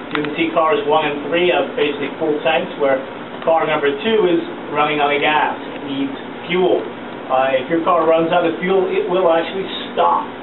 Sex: male